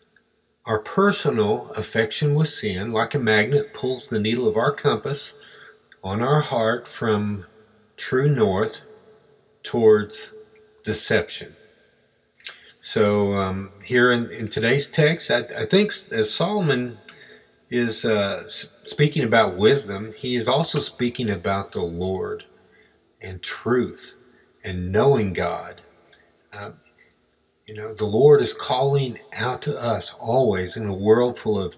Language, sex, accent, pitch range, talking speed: English, male, American, 100-145 Hz, 125 wpm